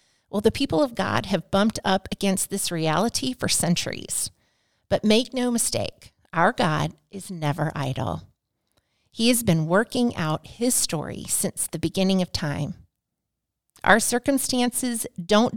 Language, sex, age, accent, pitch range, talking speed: English, female, 40-59, American, 175-230 Hz, 145 wpm